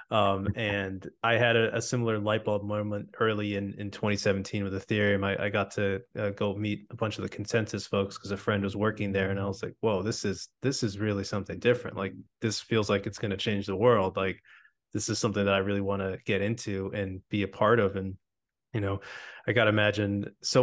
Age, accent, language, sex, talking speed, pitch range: 20-39, American, English, male, 235 wpm, 100-115 Hz